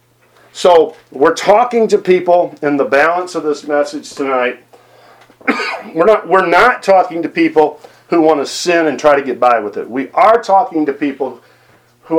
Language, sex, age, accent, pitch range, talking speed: English, male, 50-69, American, 135-180 Hz, 170 wpm